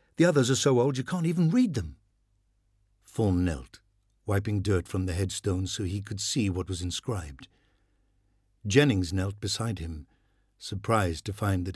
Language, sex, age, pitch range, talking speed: English, male, 60-79, 95-110 Hz, 165 wpm